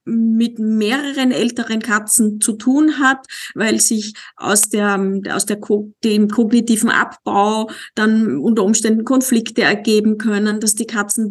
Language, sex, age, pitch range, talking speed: German, female, 30-49, 205-225 Hz, 135 wpm